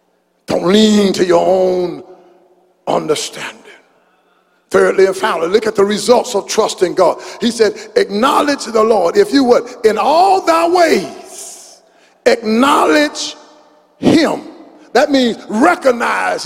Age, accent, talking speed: 50-69, American, 120 wpm